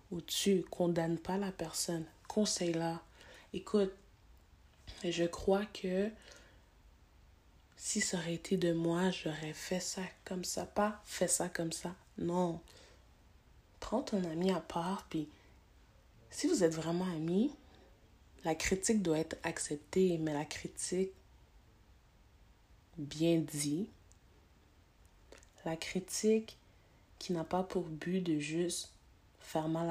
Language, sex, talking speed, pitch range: French, female, 120 wpm, 115-185 Hz